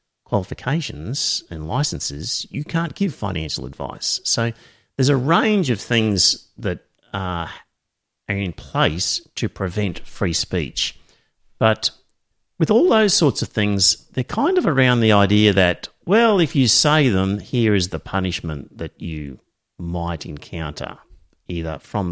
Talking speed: 140 wpm